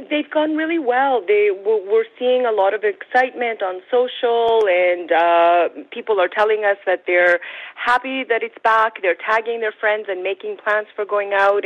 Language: English